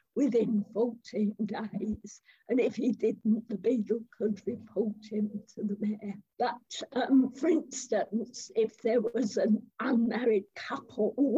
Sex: female